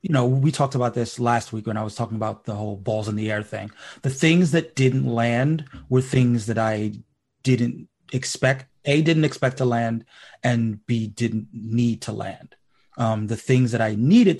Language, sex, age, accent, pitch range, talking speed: English, male, 30-49, American, 110-135 Hz, 200 wpm